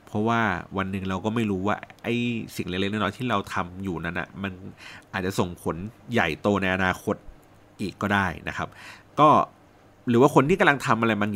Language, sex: Thai, male